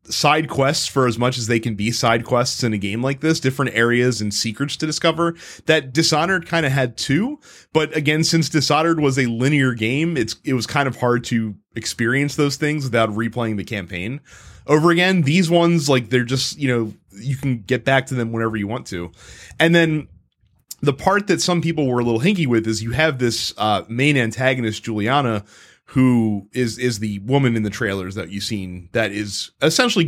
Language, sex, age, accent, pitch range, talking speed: English, male, 30-49, American, 115-150 Hz, 205 wpm